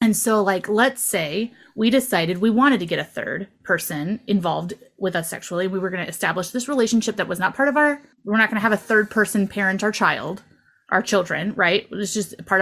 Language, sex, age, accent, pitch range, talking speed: English, female, 20-39, American, 180-225 Hz, 225 wpm